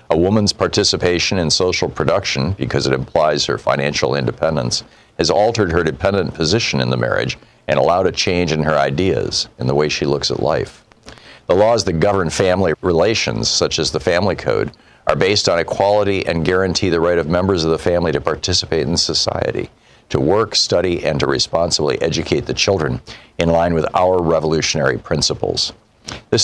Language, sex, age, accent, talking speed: English, male, 50-69, American, 175 wpm